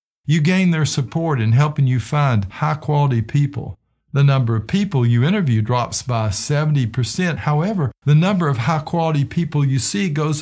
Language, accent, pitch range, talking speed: English, American, 115-150 Hz, 160 wpm